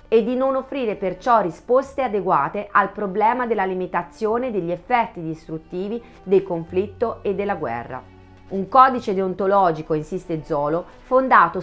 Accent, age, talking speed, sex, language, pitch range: native, 30-49, 130 wpm, female, Italian, 170-230 Hz